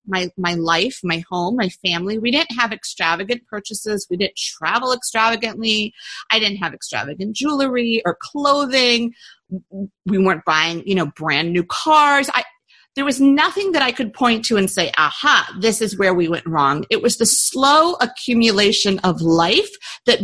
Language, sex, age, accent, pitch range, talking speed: English, female, 40-59, American, 185-250 Hz, 170 wpm